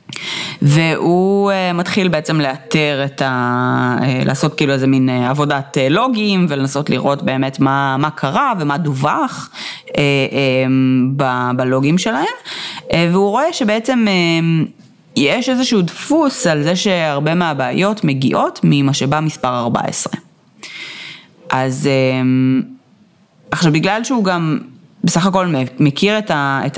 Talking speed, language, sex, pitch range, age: 105 wpm, Hebrew, female, 135-180 Hz, 30-49